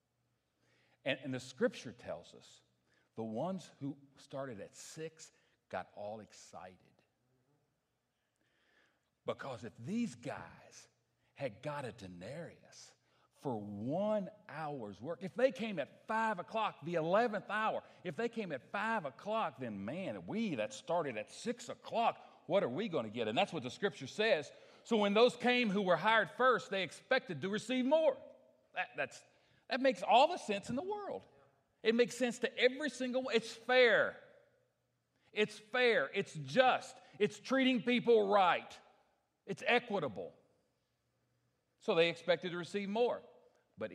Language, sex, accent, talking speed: English, male, American, 150 wpm